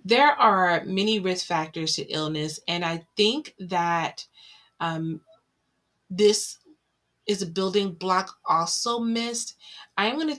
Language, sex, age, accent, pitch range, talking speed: English, female, 20-39, American, 165-205 Hz, 135 wpm